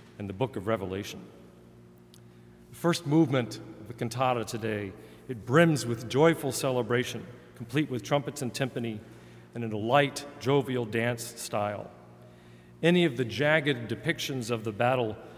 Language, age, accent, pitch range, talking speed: English, 40-59, American, 105-145 Hz, 145 wpm